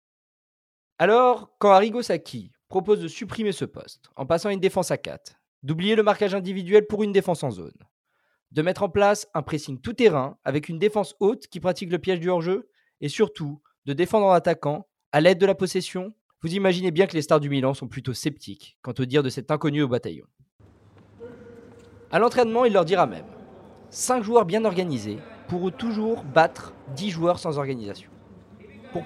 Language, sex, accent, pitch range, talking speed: French, male, French, 140-205 Hz, 185 wpm